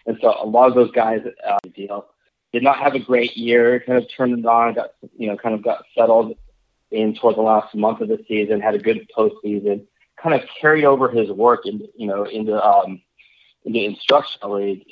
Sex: male